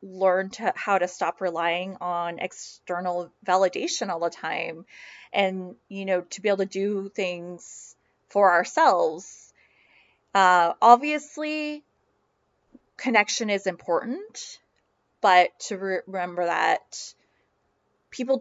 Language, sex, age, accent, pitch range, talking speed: English, female, 20-39, American, 185-245 Hz, 110 wpm